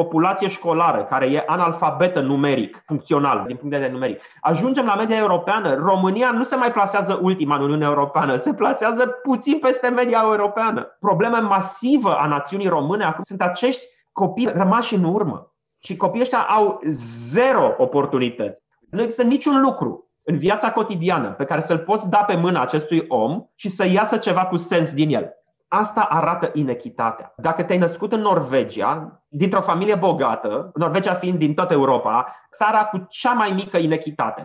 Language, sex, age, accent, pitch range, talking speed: Romanian, male, 30-49, native, 165-225 Hz, 165 wpm